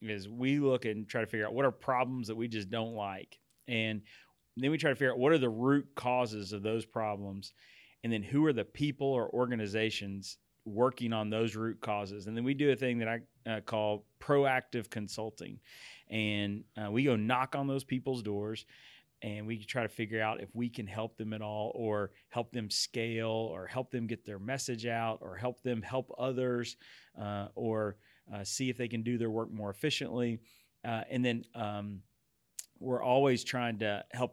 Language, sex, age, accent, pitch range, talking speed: English, male, 30-49, American, 105-120 Hz, 200 wpm